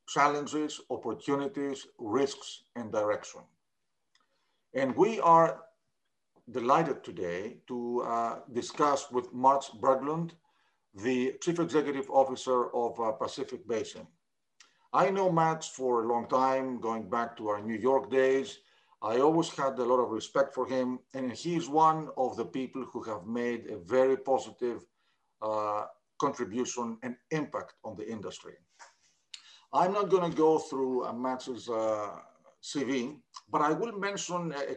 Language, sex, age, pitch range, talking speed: English, male, 50-69, 125-155 Hz, 140 wpm